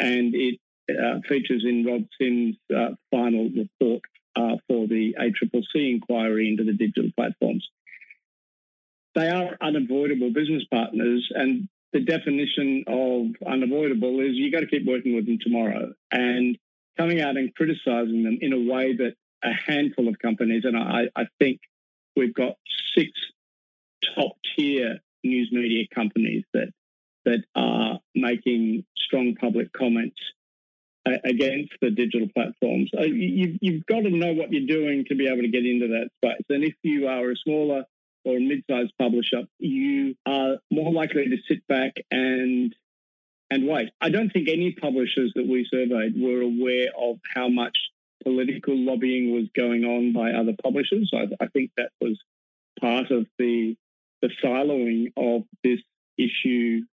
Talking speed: 150 wpm